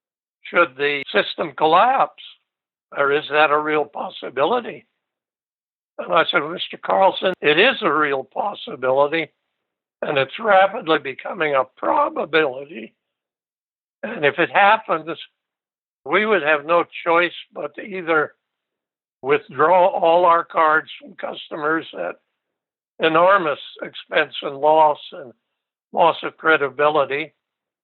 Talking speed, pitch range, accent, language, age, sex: 115 wpm, 145-180 Hz, American, English, 60-79, male